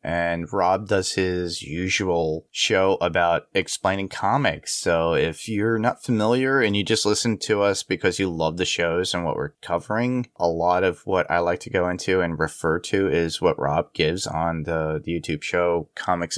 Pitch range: 80-105 Hz